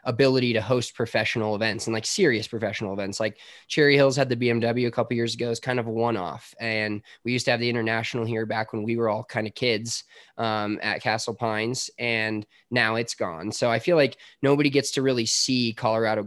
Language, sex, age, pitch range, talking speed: English, male, 20-39, 110-125 Hz, 220 wpm